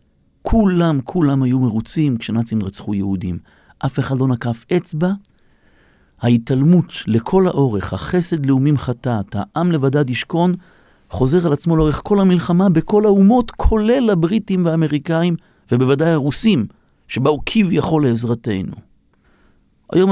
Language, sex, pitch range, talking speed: Hebrew, male, 105-155 Hz, 115 wpm